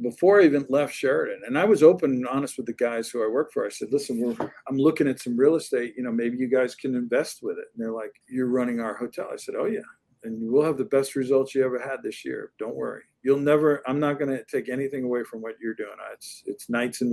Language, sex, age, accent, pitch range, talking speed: English, male, 50-69, American, 120-145 Hz, 275 wpm